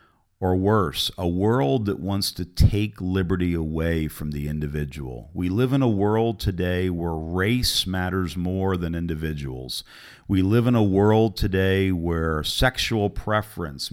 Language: English